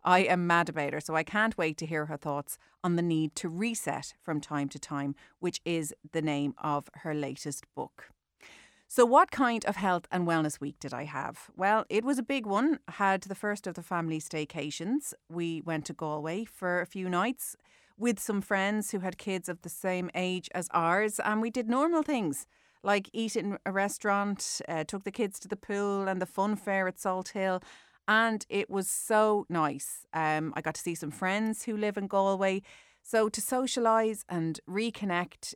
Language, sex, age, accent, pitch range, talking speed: English, female, 30-49, Irish, 155-200 Hz, 200 wpm